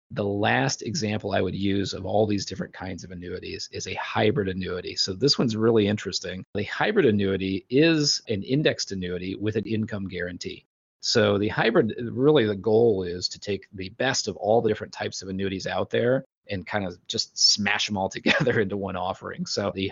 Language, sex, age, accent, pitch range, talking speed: English, male, 30-49, American, 95-110 Hz, 200 wpm